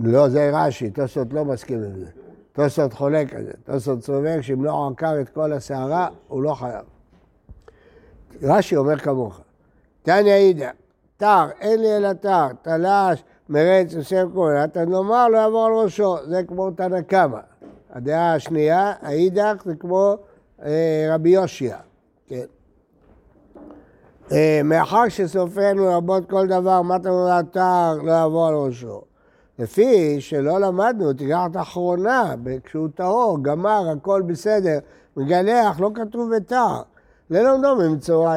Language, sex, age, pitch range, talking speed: Hebrew, male, 60-79, 145-200 Hz, 135 wpm